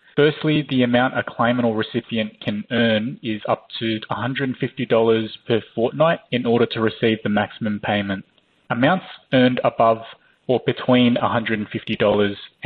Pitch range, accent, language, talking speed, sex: 110-135 Hz, Australian, English, 135 wpm, male